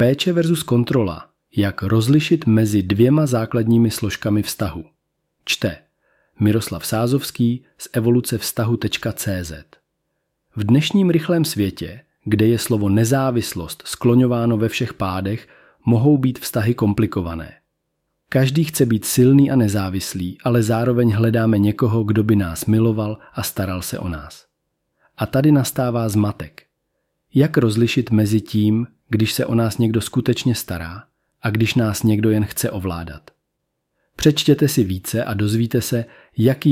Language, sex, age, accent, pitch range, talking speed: Czech, male, 40-59, native, 105-125 Hz, 130 wpm